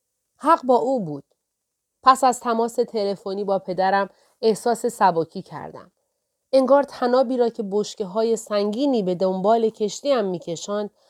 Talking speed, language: 135 wpm, Persian